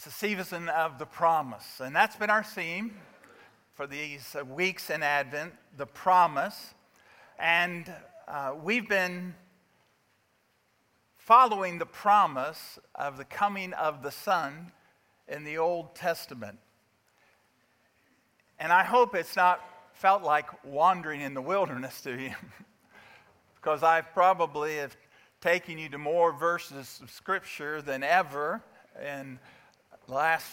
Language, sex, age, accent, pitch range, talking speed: English, male, 50-69, American, 145-185 Hz, 120 wpm